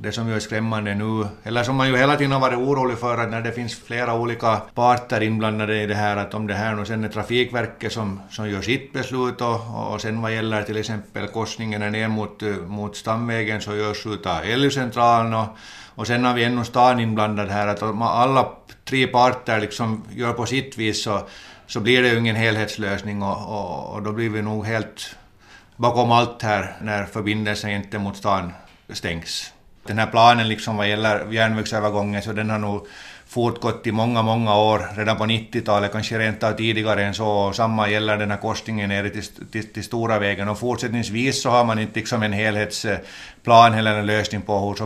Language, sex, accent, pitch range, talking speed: Swedish, male, Finnish, 105-115 Hz, 195 wpm